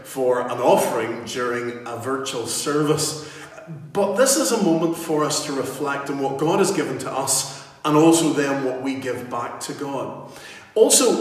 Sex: male